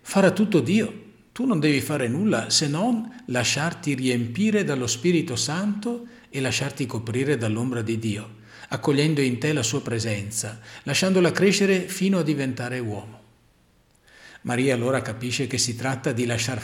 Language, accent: Italian, native